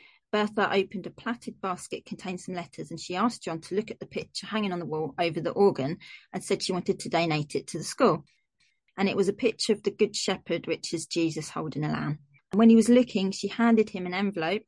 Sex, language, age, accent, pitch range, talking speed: female, English, 30-49, British, 175-225 Hz, 240 wpm